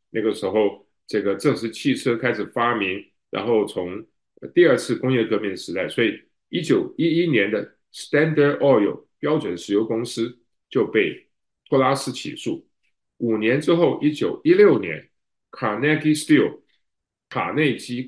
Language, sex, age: Chinese, male, 50-69